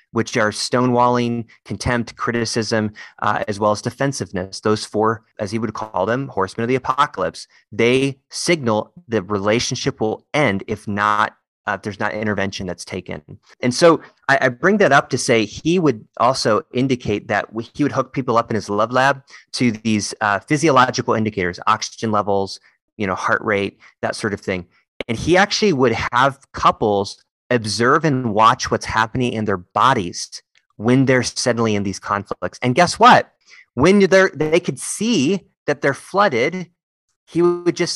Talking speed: 170 wpm